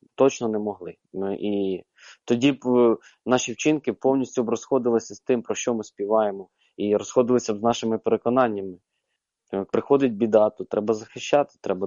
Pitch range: 105-120 Hz